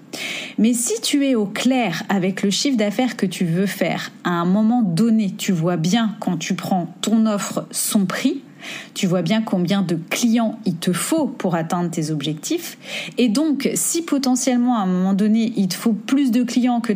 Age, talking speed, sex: 30-49, 200 wpm, female